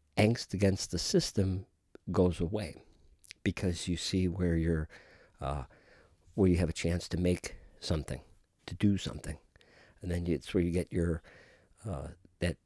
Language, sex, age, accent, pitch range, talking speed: English, male, 50-69, American, 80-95 Hz, 150 wpm